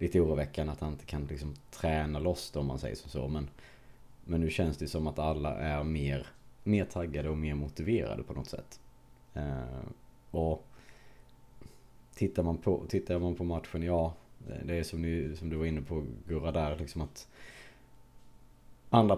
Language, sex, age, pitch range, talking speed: Swedish, male, 30-49, 75-95 Hz, 145 wpm